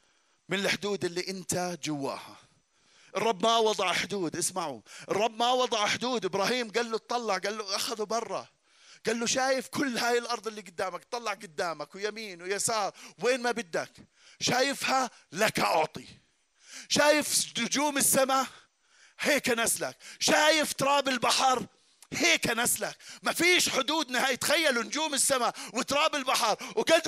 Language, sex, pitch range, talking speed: Arabic, male, 225-295 Hz, 135 wpm